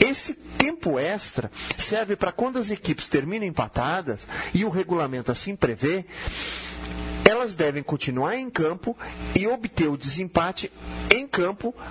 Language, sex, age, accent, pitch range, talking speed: Portuguese, male, 40-59, Brazilian, 135-195 Hz, 130 wpm